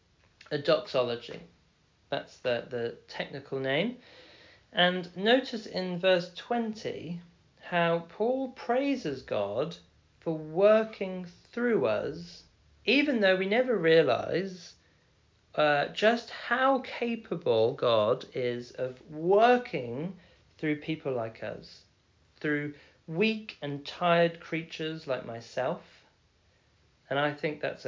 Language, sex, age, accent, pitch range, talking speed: English, male, 40-59, British, 115-190 Hz, 100 wpm